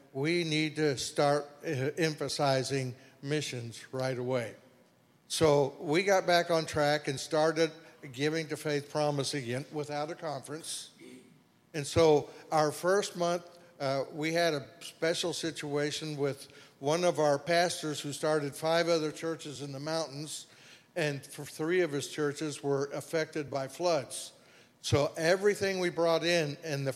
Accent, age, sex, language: American, 60-79, male, English